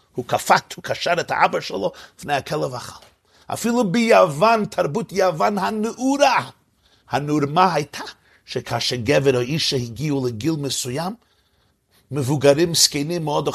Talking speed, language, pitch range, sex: 125 wpm, Hebrew, 125-195 Hz, male